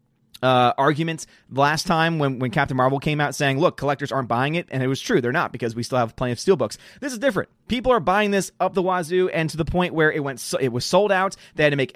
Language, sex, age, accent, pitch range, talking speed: English, male, 30-49, American, 130-180 Hz, 275 wpm